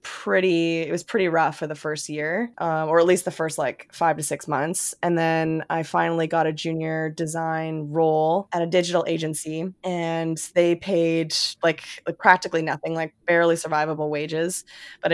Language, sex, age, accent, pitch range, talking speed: English, female, 20-39, American, 160-180 Hz, 180 wpm